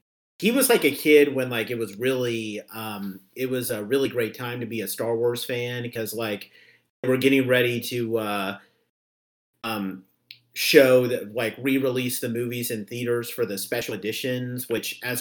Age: 40-59